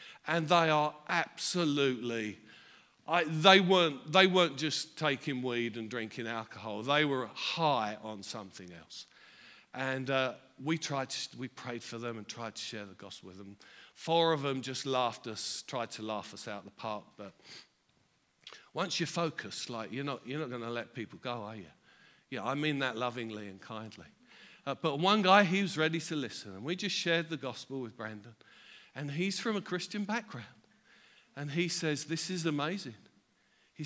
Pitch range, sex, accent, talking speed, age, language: 115-170 Hz, male, British, 185 wpm, 50-69, English